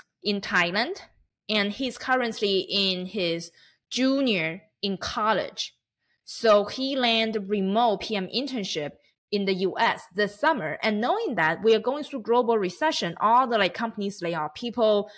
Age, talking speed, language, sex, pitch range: 20-39, 145 wpm, Hindi, female, 185-230 Hz